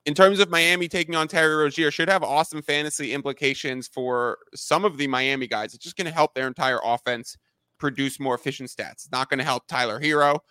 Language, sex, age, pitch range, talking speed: English, male, 20-39, 135-165 Hz, 210 wpm